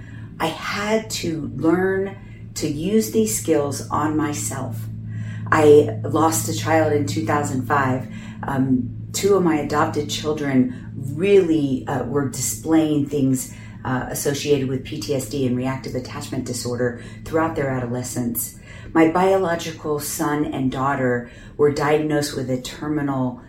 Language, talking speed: English, 125 wpm